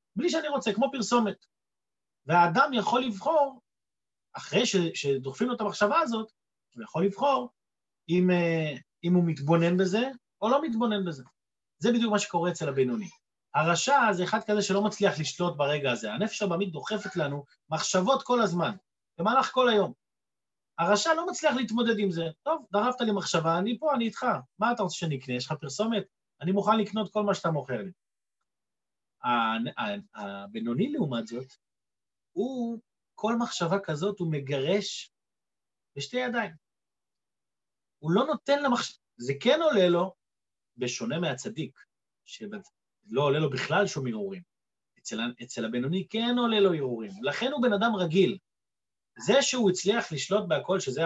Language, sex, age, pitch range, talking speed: Hebrew, male, 30-49, 160-225 Hz, 145 wpm